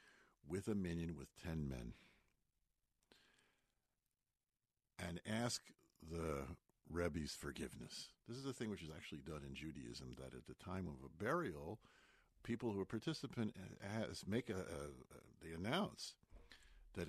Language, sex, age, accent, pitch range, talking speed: English, male, 50-69, American, 70-95 Hz, 140 wpm